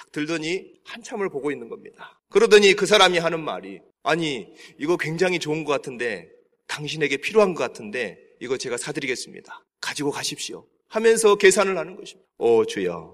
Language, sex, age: Korean, male, 30-49